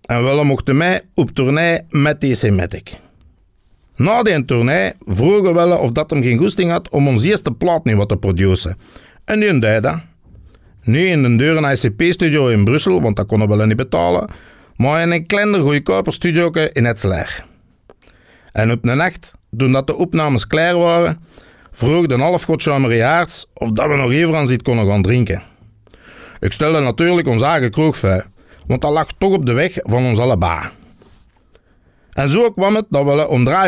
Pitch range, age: 105-160 Hz, 60-79